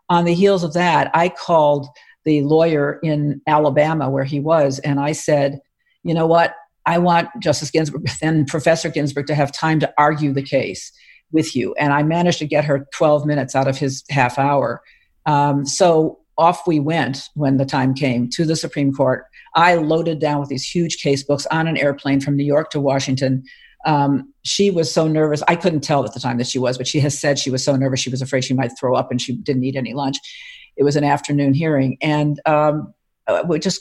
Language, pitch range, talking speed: English, 140-165 Hz, 215 wpm